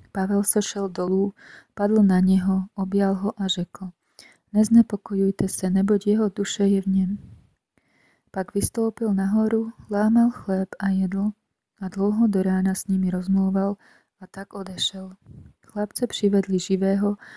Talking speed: 140 wpm